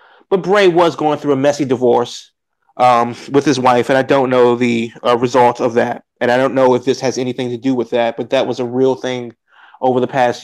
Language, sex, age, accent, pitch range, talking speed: English, male, 30-49, American, 125-155 Hz, 240 wpm